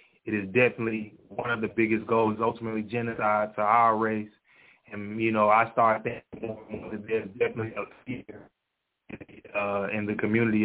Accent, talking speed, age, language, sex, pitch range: American, 150 wpm, 20-39, English, male, 105-120 Hz